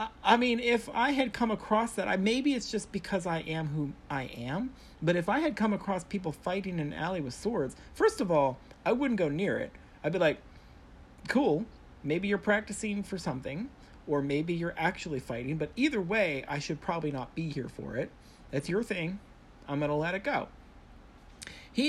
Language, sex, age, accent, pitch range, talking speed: English, male, 40-59, American, 160-245 Hz, 205 wpm